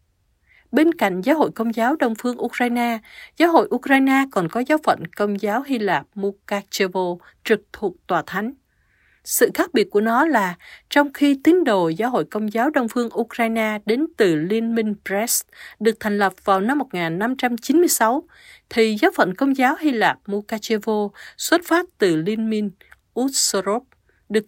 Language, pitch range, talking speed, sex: Vietnamese, 200-275 Hz, 165 wpm, female